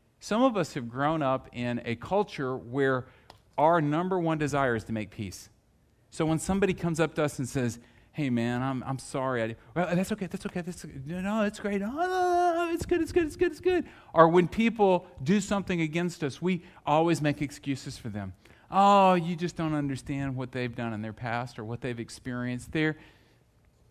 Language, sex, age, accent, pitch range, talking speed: English, male, 40-59, American, 120-170 Hz, 205 wpm